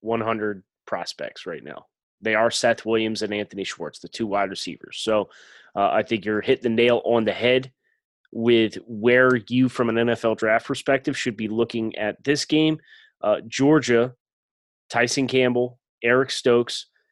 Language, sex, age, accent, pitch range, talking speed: English, male, 20-39, American, 115-140 Hz, 160 wpm